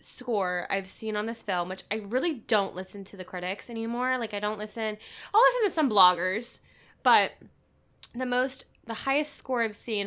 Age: 10-29